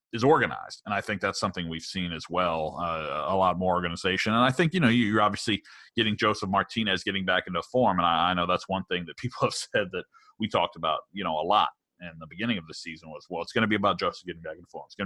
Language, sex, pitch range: English, male, 90-115 Hz